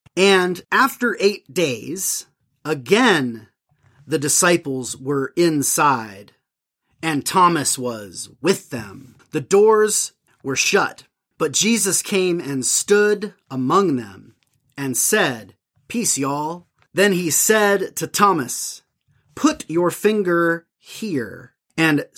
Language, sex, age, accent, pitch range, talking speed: English, male, 30-49, American, 130-190 Hz, 105 wpm